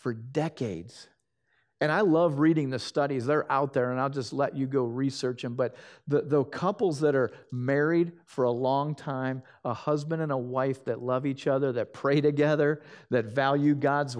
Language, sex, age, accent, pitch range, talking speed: English, male, 50-69, American, 130-150 Hz, 190 wpm